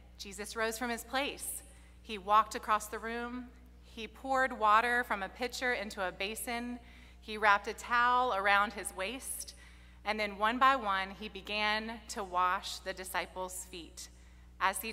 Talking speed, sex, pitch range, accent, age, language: 160 wpm, female, 185-235 Hz, American, 30-49, English